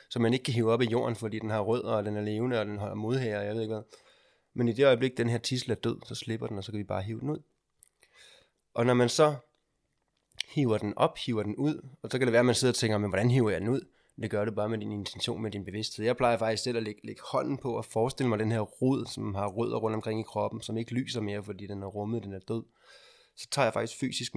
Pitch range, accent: 105-120 Hz, native